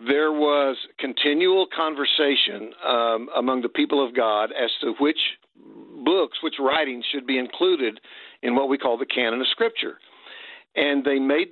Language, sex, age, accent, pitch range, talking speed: English, male, 60-79, American, 135-180 Hz, 155 wpm